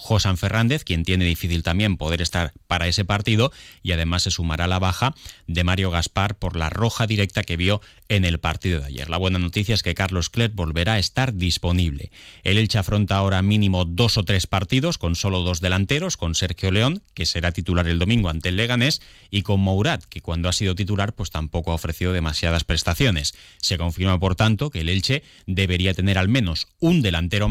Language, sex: Spanish, male